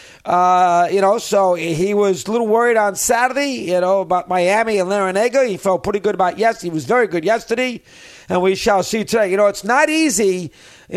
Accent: American